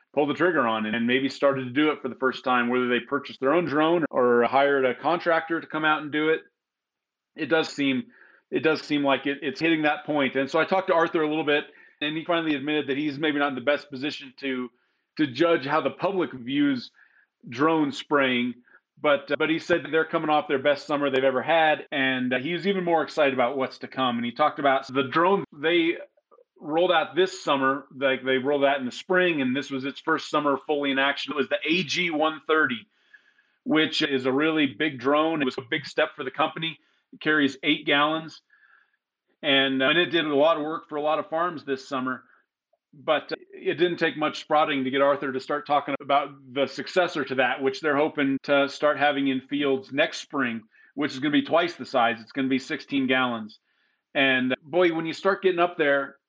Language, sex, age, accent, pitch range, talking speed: English, male, 30-49, American, 135-160 Hz, 225 wpm